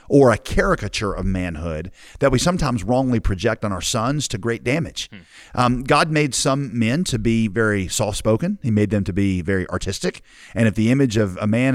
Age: 40-59